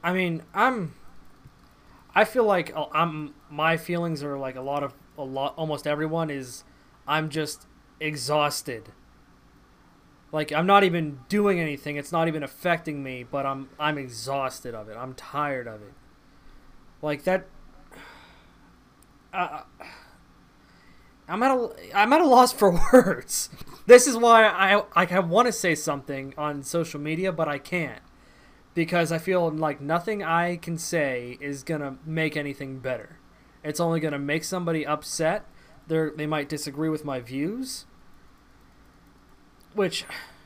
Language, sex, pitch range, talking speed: English, male, 140-170 Hz, 145 wpm